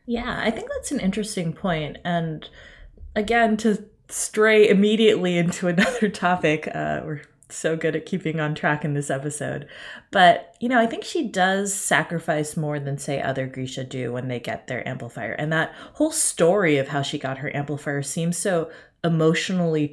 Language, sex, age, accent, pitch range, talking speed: English, female, 20-39, American, 140-180 Hz, 175 wpm